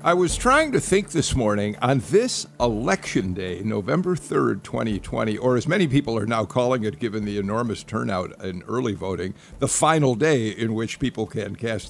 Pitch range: 105-130 Hz